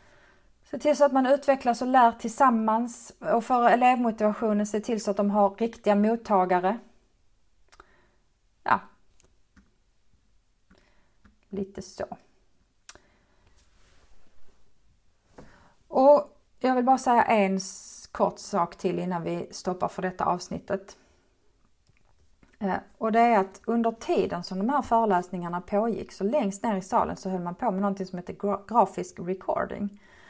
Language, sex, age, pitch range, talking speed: Swedish, female, 30-49, 190-235 Hz, 125 wpm